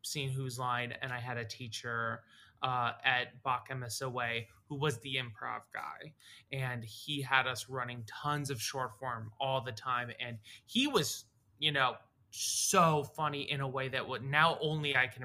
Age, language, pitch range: 20-39, English, 120-140 Hz